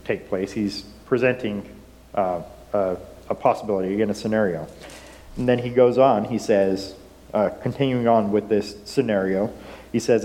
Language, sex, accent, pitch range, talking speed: English, male, American, 105-125 Hz, 150 wpm